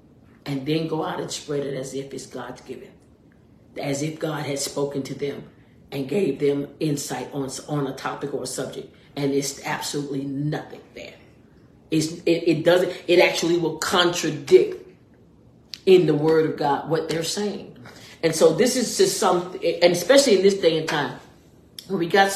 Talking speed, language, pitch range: 175 wpm, English, 140-180 Hz